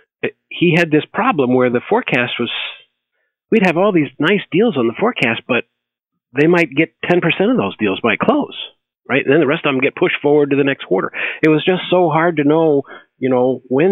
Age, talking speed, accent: 50-69, 215 wpm, American